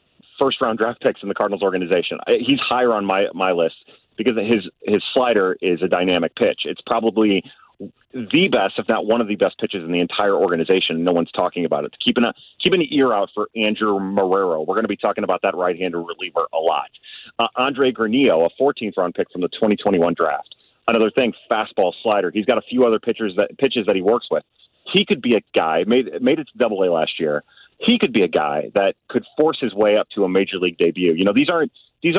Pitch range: 100-130 Hz